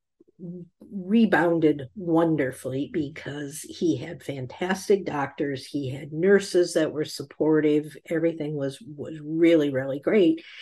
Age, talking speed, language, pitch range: 50-69, 105 wpm, English, 145-185 Hz